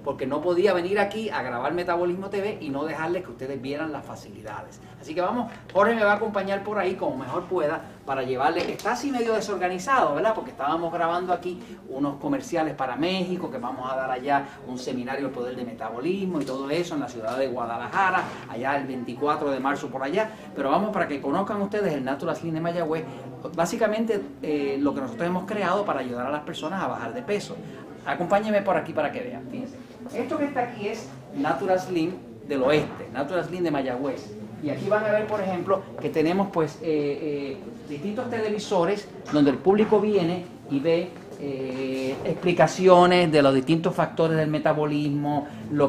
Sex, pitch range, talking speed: male, 140-185 Hz, 195 wpm